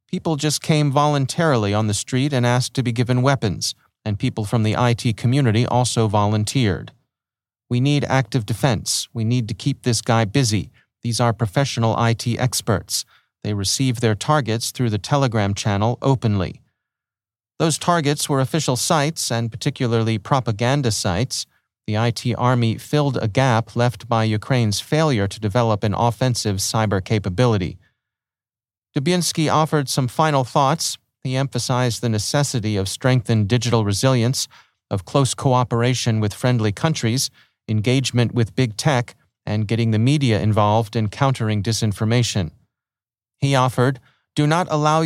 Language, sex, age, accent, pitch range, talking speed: English, male, 40-59, American, 110-135 Hz, 145 wpm